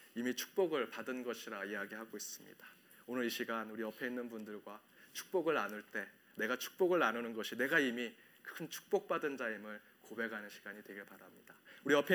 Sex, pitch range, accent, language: male, 110-150 Hz, native, Korean